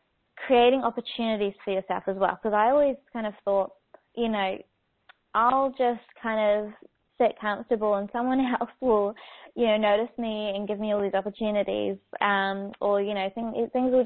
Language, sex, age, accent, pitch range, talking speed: English, female, 20-39, Australian, 195-220 Hz, 170 wpm